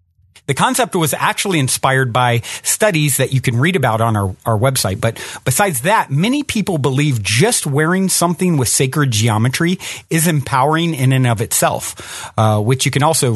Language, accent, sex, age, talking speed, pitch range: English, American, male, 40-59, 175 wpm, 120-165 Hz